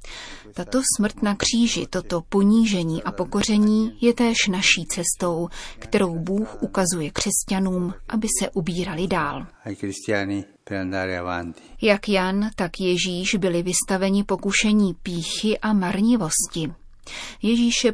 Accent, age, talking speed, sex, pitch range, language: native, 30-49, 105 wpm, female, 180-215 Hz, Czech